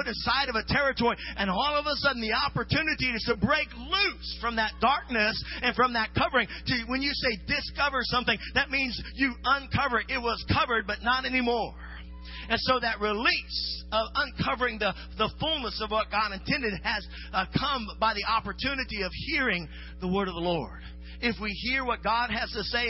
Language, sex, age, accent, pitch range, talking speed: English, male, 40-59, American, 210-260 Hz, 190 wpm